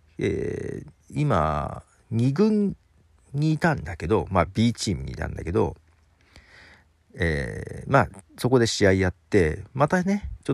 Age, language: 40-59, Japanese